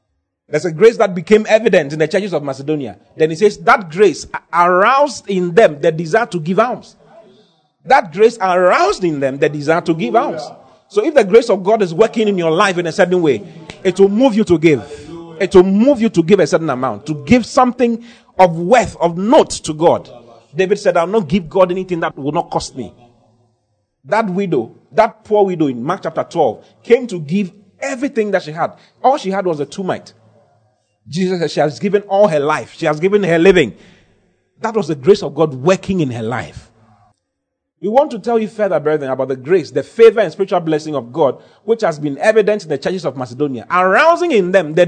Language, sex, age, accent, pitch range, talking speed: English, male, 40-59, Nigerian, 155-210 Hz, 215 wpm